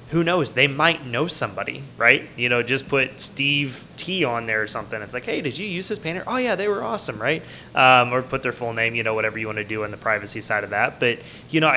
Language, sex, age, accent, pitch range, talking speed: English, male, 20-39, American, 110-140 Hz, 270 wpm